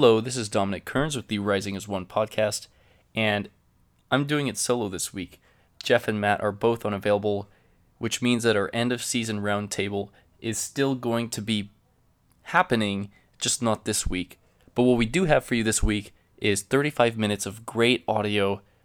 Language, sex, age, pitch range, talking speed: English, male, 20-39, 100-115 Hz, 180 wpm